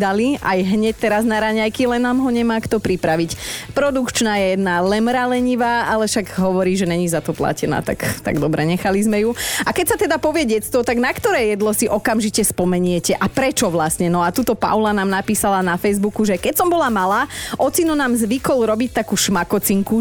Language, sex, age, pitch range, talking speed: Slovak, female, 30-49, 190-240 Hz, 195 wpm